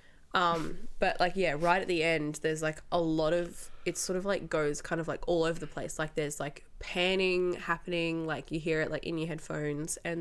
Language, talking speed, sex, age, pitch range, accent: English, 230 wpm, female, 10-29, 155-185 Hz, Australian